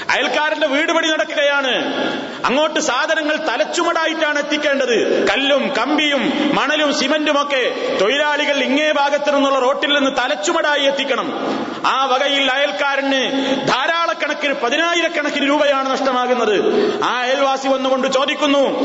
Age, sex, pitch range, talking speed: 30-49, male, 250-305 Hz, 95 wpm